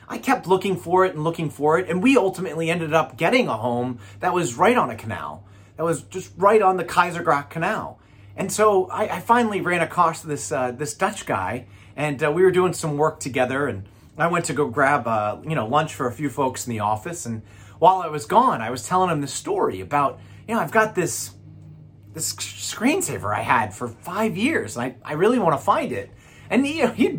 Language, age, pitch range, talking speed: English, 30-49, 120-195 Hz, 225 wpm